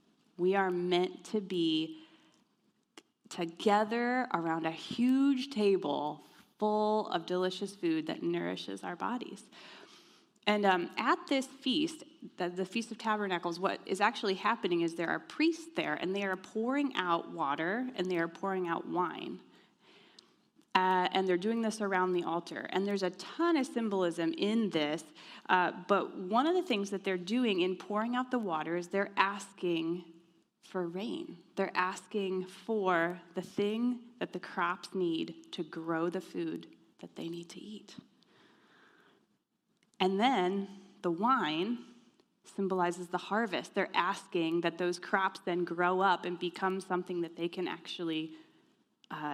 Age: 20-39